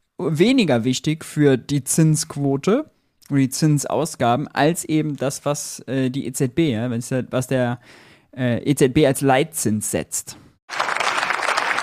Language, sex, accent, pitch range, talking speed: German, male, German, 125-165 Hz, 115 wpm